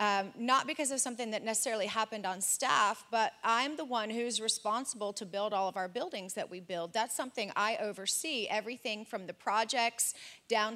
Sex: female